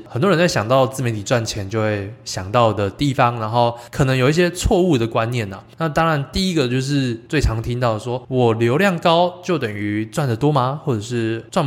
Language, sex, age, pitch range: Chinese, male, 20-39, 110-140 Hz